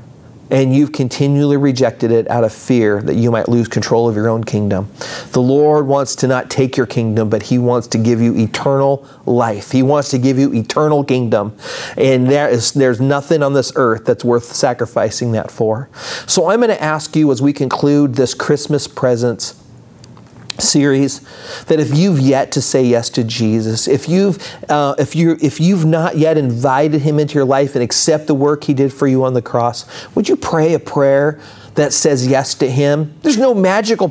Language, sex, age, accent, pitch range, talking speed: English, male, 40-59, American, 125-155 Hz, 200 wpm